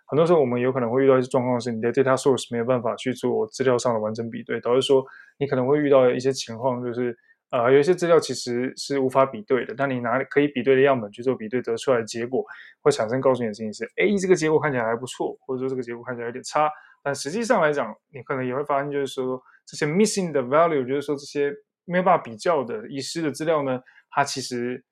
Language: Chinese